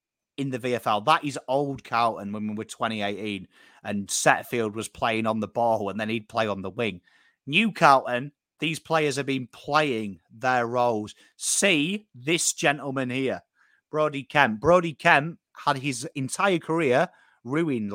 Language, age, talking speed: English, 30-49, 155 wpm